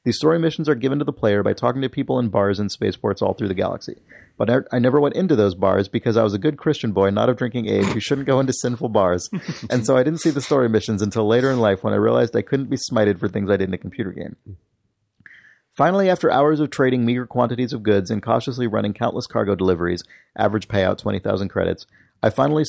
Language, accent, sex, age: English, American, male, 30-49